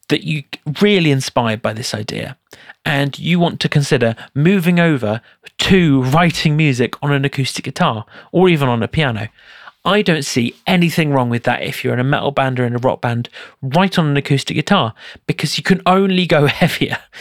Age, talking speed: 30-49, 190 wpm